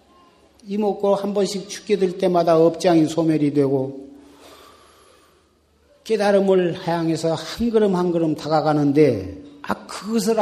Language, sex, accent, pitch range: Korean, male, native, 145-205 Hz